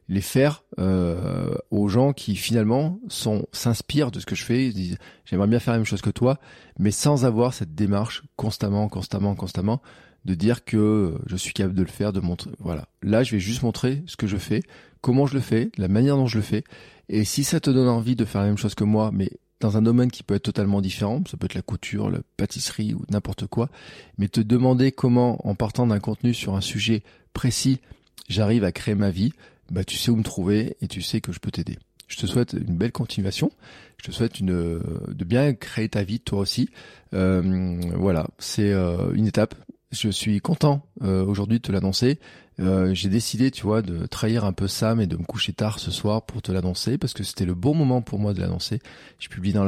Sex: male